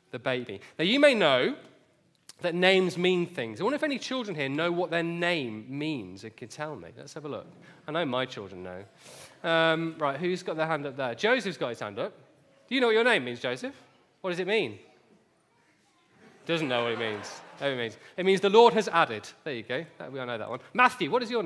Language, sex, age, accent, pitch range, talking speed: English, male, 30-49, British, 155-215 Hz, 230 wpm